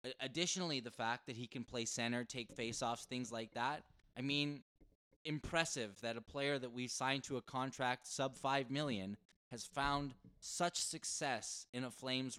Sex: male